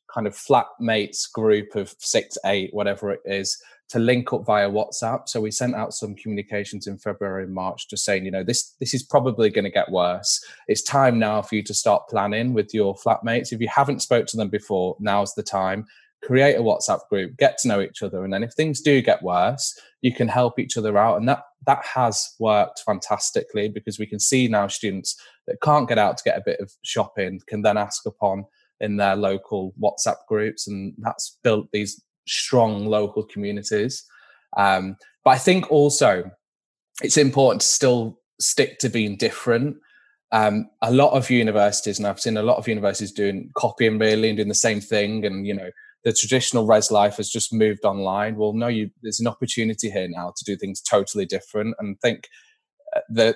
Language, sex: English, male